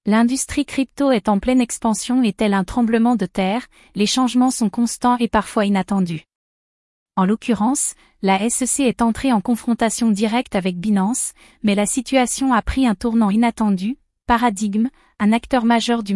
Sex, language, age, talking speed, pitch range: female, French, 30-49, 160 wpm, 210-245 Hz